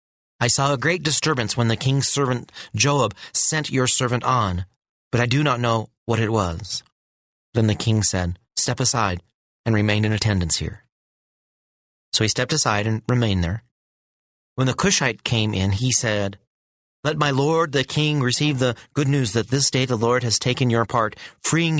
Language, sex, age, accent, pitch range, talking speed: English, male, 30-49, American, 100-125 Hz, 180 wpm